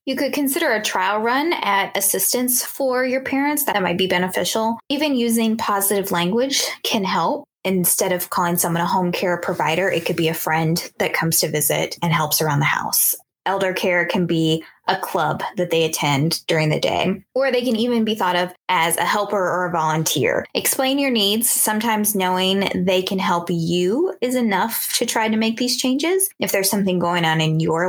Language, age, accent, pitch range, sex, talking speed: English, 10-29, American, 170-215 Hz, female, 200 wpm